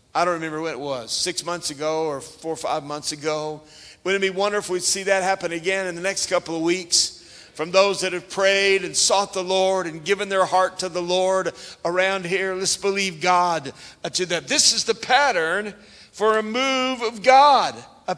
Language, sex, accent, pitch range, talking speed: English, male, American, 160-210 Hz, 210 wpm